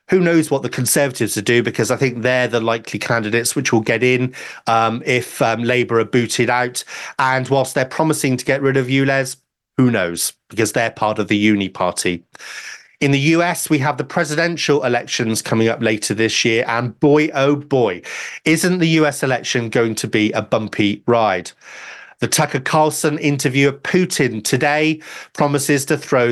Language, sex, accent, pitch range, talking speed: English, male, British, 120-155 Hz, 180 wpm